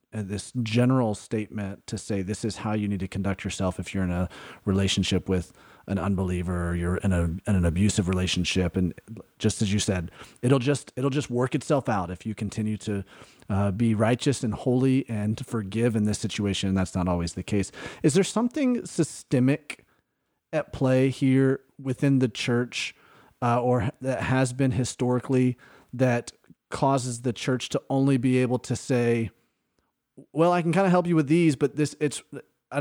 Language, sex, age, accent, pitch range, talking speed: English, male, 30-49, American, 105-135 Hz, 190 wpm